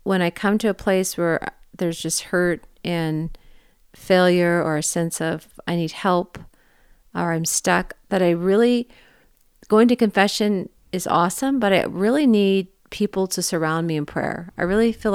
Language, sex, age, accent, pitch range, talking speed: English, female, 40-59, American, 175-205 Hz, 170 wpm